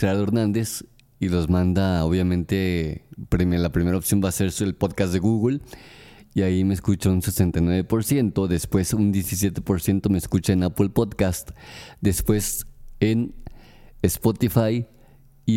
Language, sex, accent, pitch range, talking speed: Spanish, male, Mexican, 90-115 Hz, 125 wpm